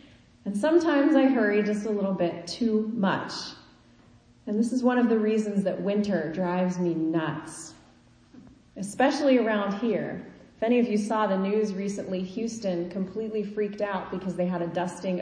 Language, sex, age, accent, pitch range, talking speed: English, female, 30-49, American, 175-215 Hz, 165 wpm